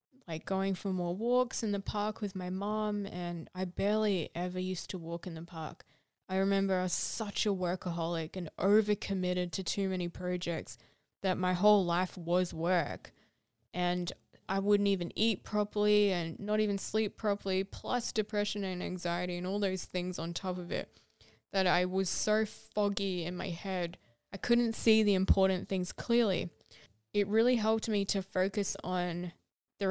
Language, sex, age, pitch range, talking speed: English, female, 10-29, 180-210 Hz, 175 wpm